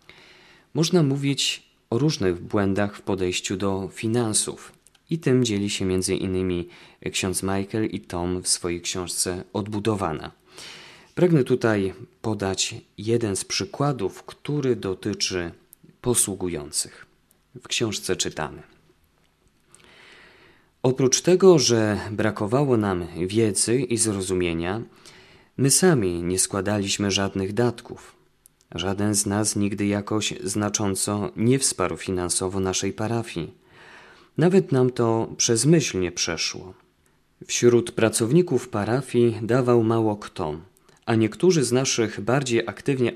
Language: Polish